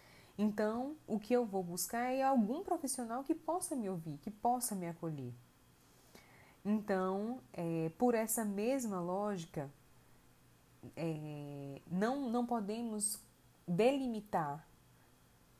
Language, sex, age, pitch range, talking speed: Portuguese, female, 20-39, 160-230 Hz, 100 wpm